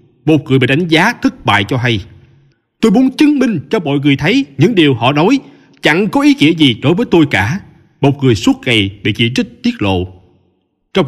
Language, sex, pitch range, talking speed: Vietnamese, male, 130-200 Hz, 215 wpm